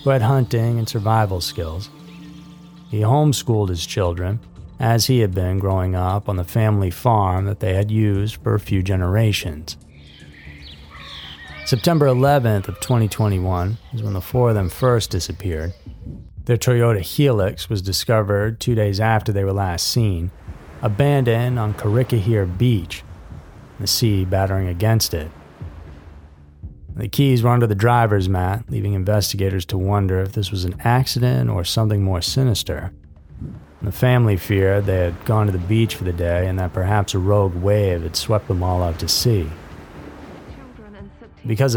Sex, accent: male, American